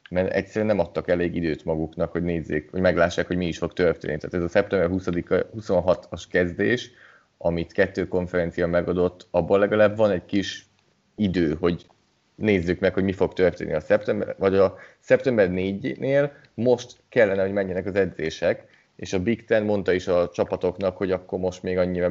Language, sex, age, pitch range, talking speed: Hungarian, male, 30-49, 85-100 Hz, 175 wpm